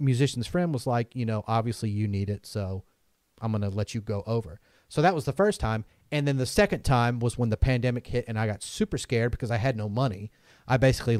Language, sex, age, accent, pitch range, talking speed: English, male, 30-49, American, 105-125 Hz, 240 wpm